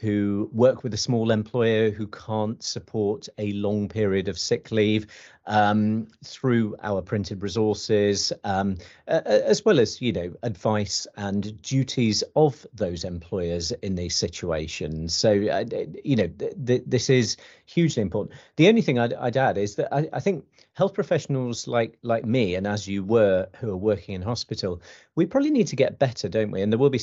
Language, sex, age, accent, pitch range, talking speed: English, male, 40-59, British, 95-120 Hz, 180 wpm